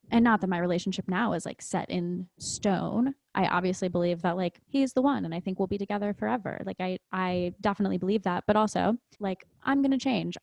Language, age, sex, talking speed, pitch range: English, 20-39, female, 220 wpm, 190-260 Hz